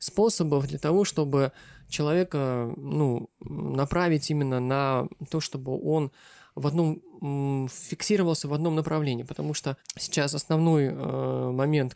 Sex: male